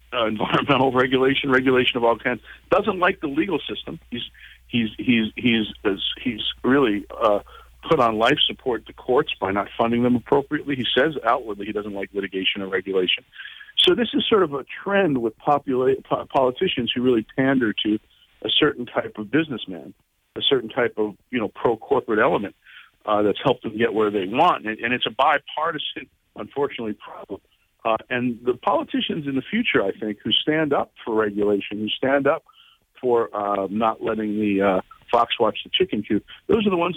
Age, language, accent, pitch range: 50-69, English, American, 110-155 Hz